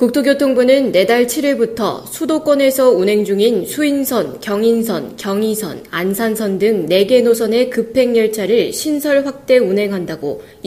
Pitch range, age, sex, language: 205-265 Hz, 20-39, female, Korean